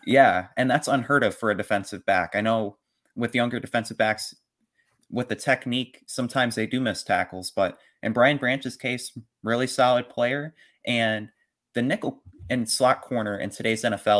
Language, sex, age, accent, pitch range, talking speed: English, male, 30-49, American, 105-125 Hz, 170 wpm